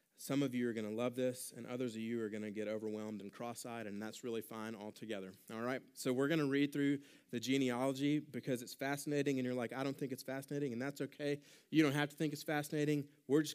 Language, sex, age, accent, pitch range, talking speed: English, male, 30-49, American, 105-130 Hz, 250 wpm